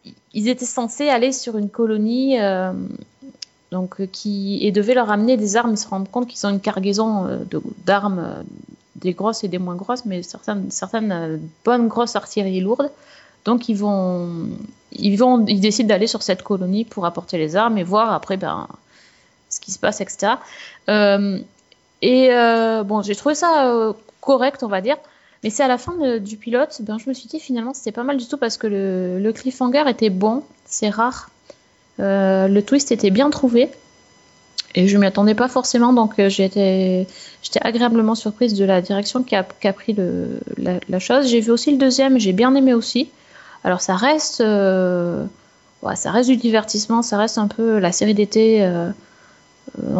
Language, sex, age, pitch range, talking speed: French, female, 30-49, 200-245 Hz, 195 wpm